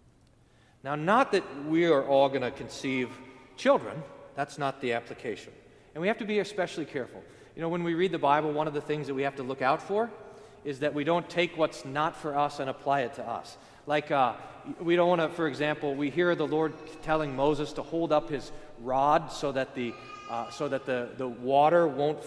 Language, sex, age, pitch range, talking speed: English, male, 40-59, 135-180 Hz, 215 wpm